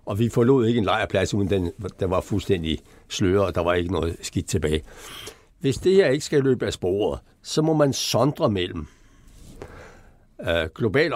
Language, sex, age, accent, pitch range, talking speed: Danish, male, 60-79, native, 105-165 Hz, 175 wpm